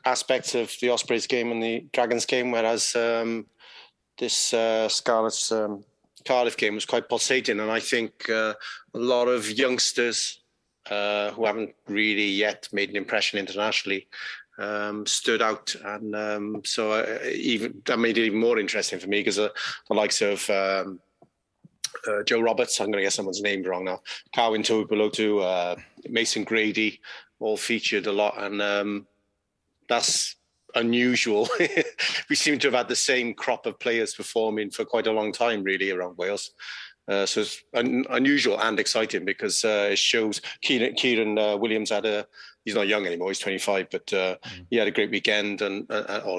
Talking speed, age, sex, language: 175 wpm, 30-49, male, English